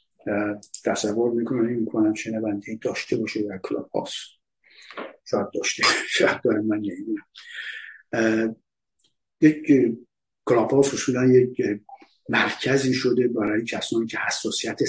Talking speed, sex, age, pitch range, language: 105 wpm, male, 50-69, 110-130 Hz, Persian